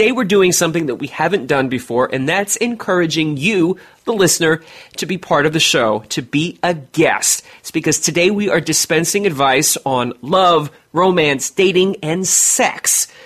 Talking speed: 175 wpm